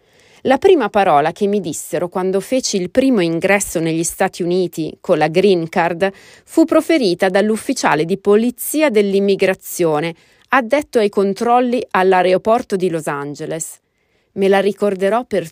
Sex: female